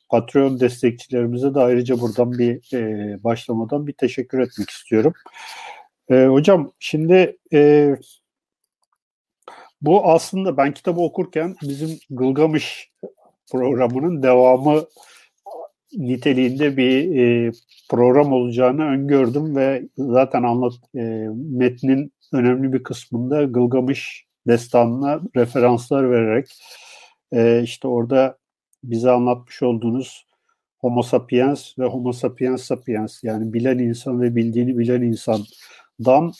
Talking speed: 100 wpm